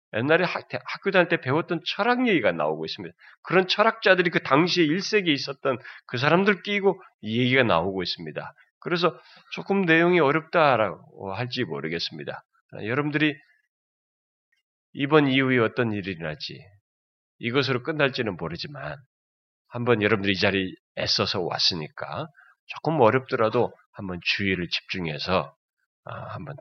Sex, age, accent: male, 30-49, native